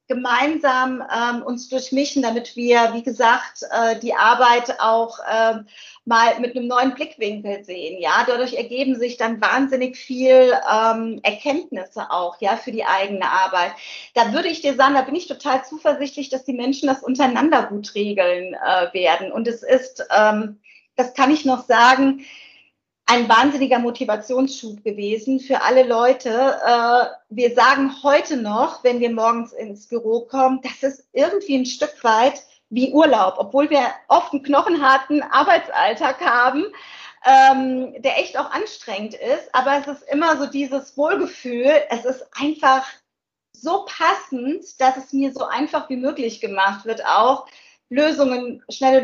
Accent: German